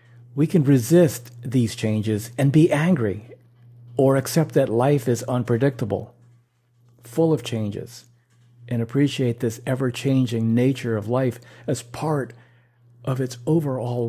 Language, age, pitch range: English, 50-69, 120-130 Hz